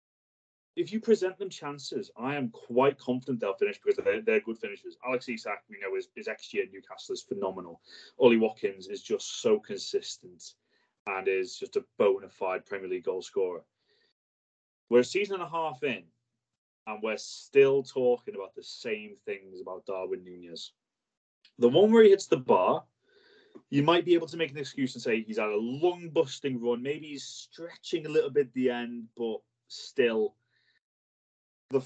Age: 30-49